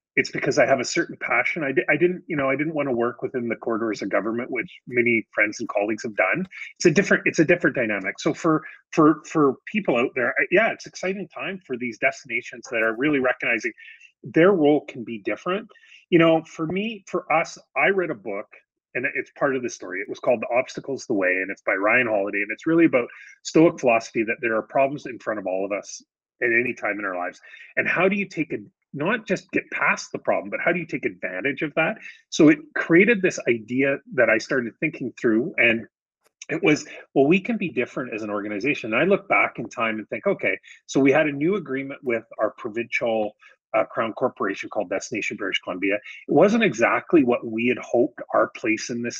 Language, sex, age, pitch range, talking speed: English, male, 30-49, 125-185 Hz, 225 wpm